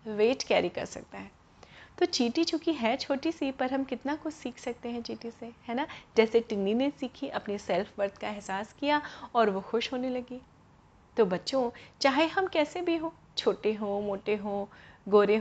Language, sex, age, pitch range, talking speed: Hindi, female, 30-49, 205-295 Hz, 190 wpm